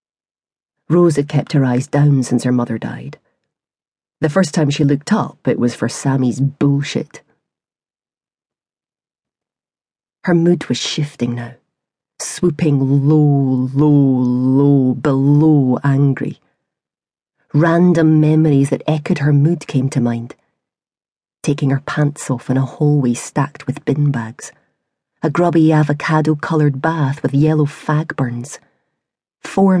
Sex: female